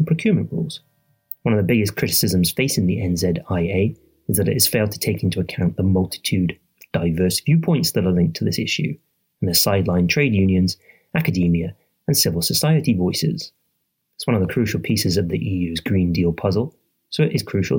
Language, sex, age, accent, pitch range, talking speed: English, male, 30-49, British, 90-140 Hz, 190 wpm